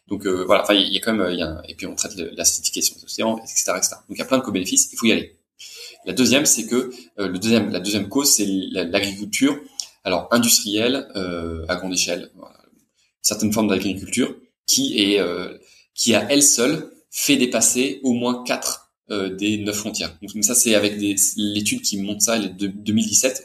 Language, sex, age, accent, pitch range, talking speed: French, male, 20-39, French, 95-110 Hz, 205 wpm